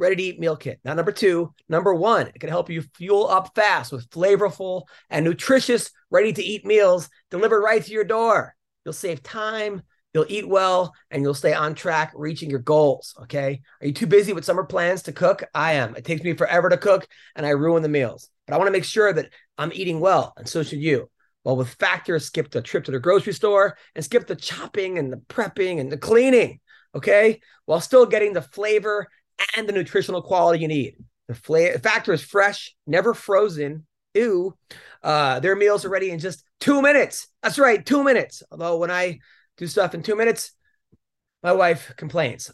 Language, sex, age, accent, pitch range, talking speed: English, male, 30-49, American, 160-210 Hz, 205 wpm